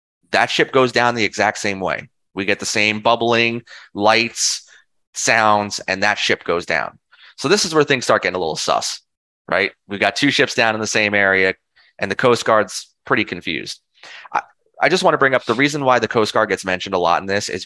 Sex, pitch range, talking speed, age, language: male, 90-115 Hz, 225 wpm, 30-49, English